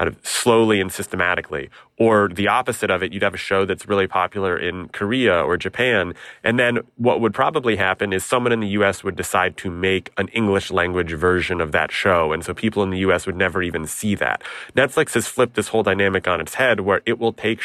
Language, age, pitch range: English, 30-49, 90-105 Hz